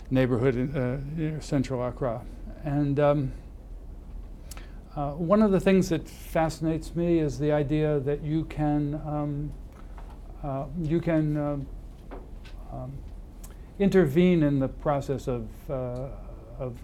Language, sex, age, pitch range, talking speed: English, male, 60-79, 95-150 Hz, 125 wpm